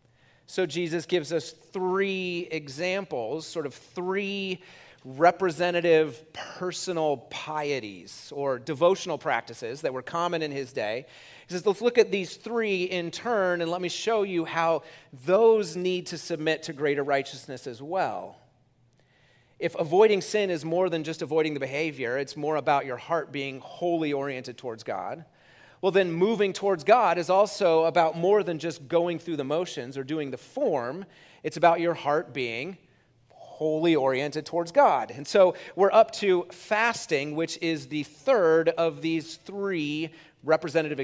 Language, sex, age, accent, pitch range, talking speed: English, male, 30-49, American, 145-180 Hz, 155 wpm